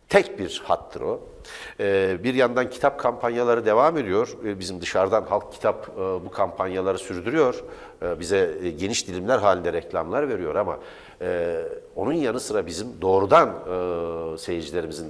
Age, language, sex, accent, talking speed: 60-79, Turkish, male, native, 120 wpm